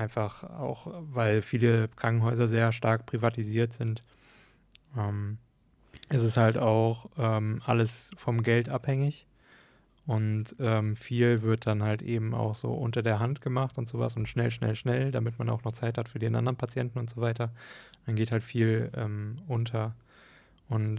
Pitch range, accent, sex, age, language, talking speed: 110-120 Hz, German, male, 20-39, German, 170 wpm